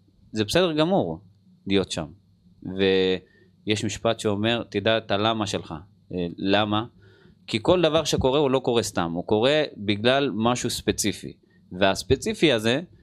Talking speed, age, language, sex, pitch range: 130 wpm, 30-49, Hebrew, male, 95-115 Hz